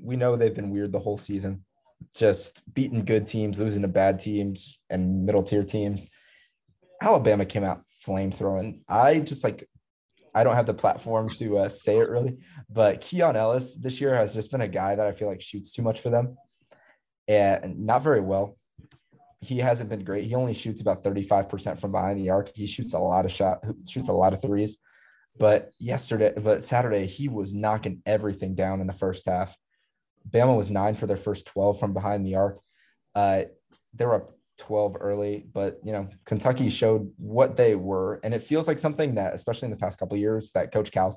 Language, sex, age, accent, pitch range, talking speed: English, male, 20-39, American, 100-115 Hz, 205 wpm